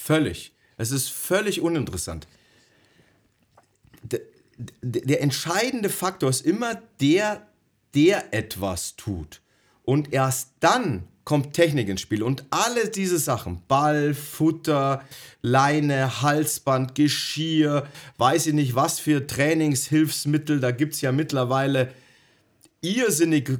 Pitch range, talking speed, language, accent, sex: 125-170 Hz, 110 wpm, German, German, male